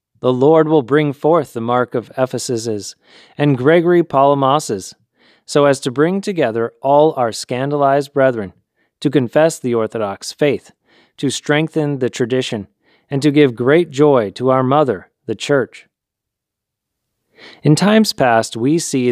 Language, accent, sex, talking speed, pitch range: English, American, male, 140 wpm, 125-150 Hz